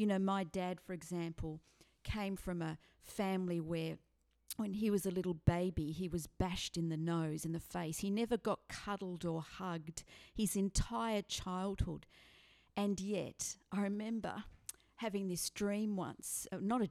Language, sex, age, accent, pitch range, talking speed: English, female, 40-59, Australian, 170-200 Hz, 165 wpm